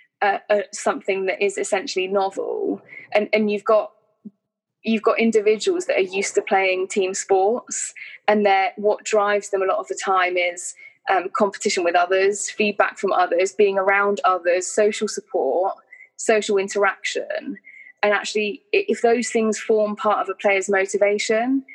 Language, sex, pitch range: English, female, 195-240 Hz